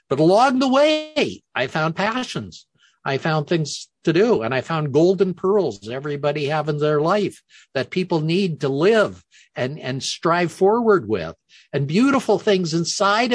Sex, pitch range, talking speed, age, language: male, 135-190 Hz, 160 wpm, 50-69, English